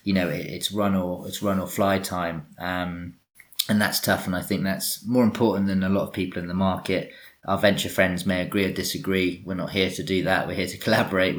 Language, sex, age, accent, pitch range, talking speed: English, male, 20-39, British, 90-100 Hz, 235 wpm